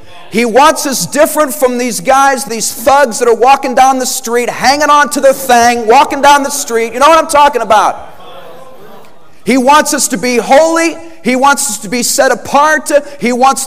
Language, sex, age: English, male, 40-59